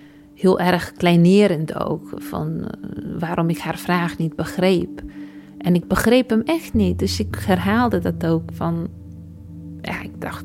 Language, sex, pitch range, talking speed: Dutch, female, 165-210 Hz, 150 wpm